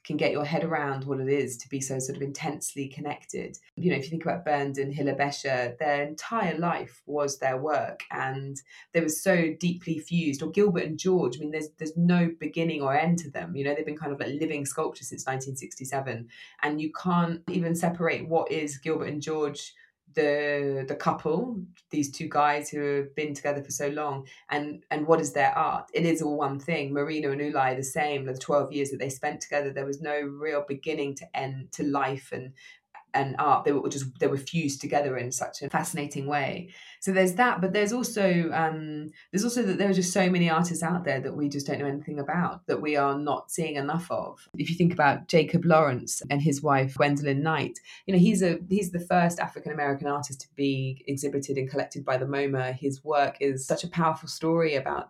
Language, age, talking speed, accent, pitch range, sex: English, 20-39, 220 wpm, British, 140-160 Hz, female